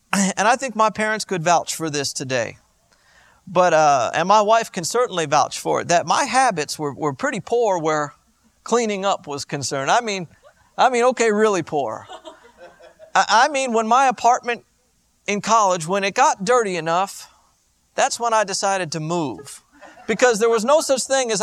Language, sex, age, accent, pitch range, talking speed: English, male, 50-69, American, 175-245 Hz, 180 wpm